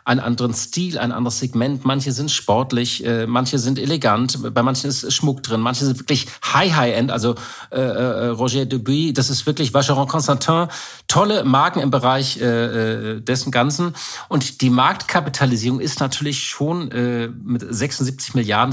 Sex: male